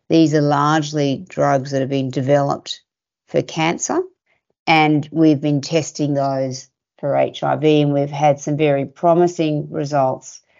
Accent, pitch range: Australian, 140-160 Hz